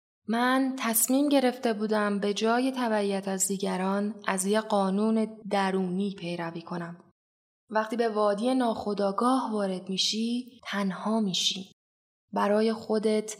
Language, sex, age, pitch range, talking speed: Persian, female, 10-29, 195-240 Hz, 110 wpm